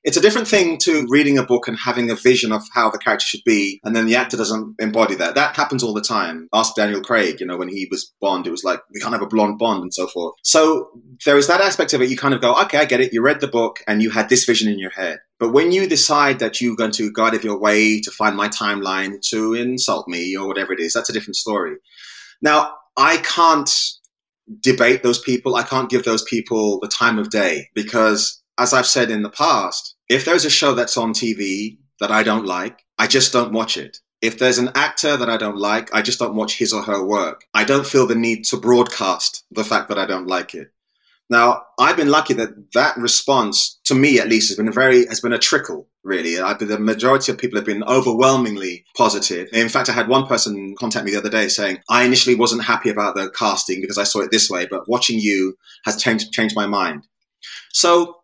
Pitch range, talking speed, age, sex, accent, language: 105-130 Hz, 245 wpm, 20-39, male, British, English